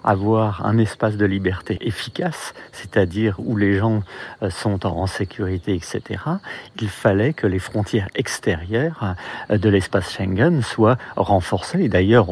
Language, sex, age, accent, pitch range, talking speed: French, male, 40-59, French, 95-115 Hz, 130 wpm